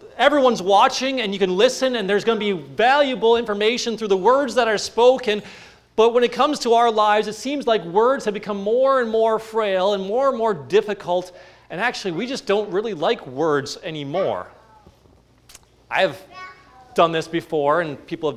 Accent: American